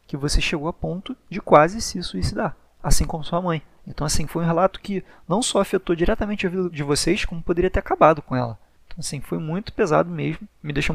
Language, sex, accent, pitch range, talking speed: Portuguese, male, Brazilian, 140-175 Hz, 225 wpm